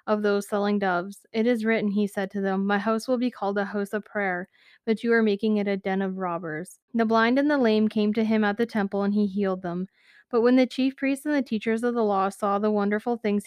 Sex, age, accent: female, 20-39, American